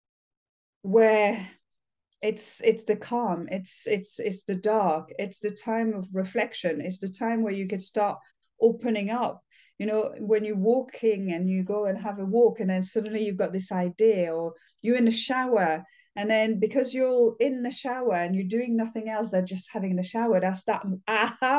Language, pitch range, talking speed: English, 185-230 Hz, 190 wpm